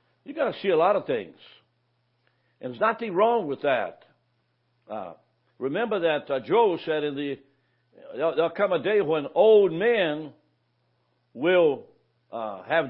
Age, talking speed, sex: 60-79, 155 wpm, male